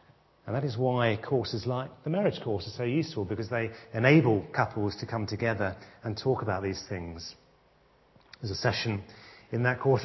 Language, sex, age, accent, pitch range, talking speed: English, male, 40-59, British, 110-145 Hz, 180 wpm